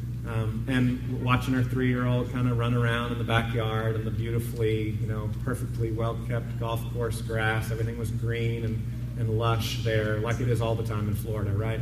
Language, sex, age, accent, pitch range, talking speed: English, male, 30-49, American, 115-145 Hz, 210 wpm